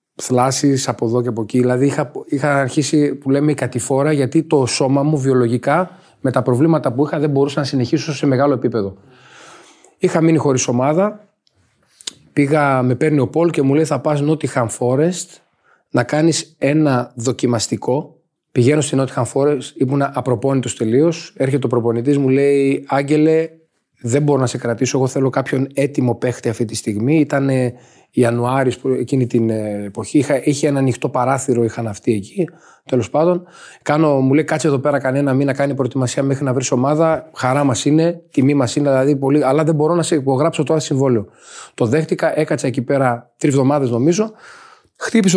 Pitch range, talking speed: 125-155 Hz, 175 wpm